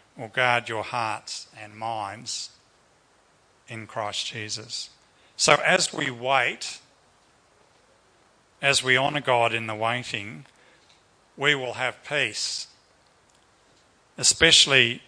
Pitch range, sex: 115-145 Hz, male